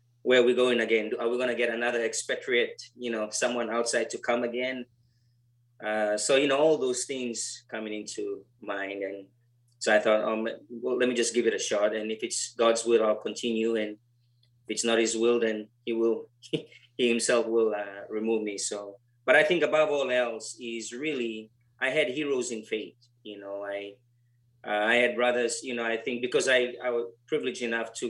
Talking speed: 205 wpm